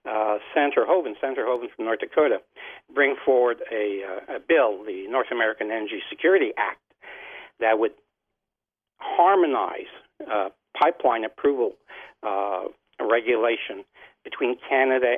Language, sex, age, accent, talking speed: English, male, 60-79, American, 120 wpm